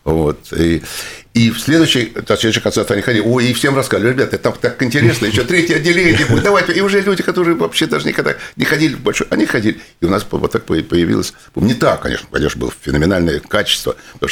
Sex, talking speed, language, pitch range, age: male, 205 wpm, Russian, 80-115 Hz, 60-79